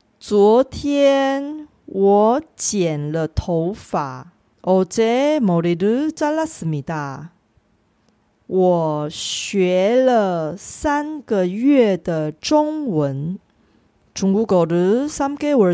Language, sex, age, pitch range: Korean, female, 40-59, 165-250 Hz